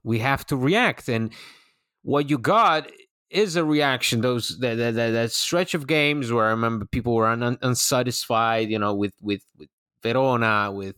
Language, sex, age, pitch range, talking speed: English, male, 30-49, 110-135 Hz, 175 wpm